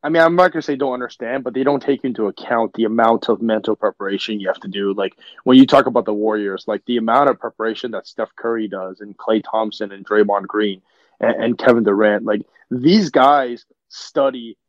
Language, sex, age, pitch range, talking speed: English, male, 30-49, 115-150 Hz, 220 wpm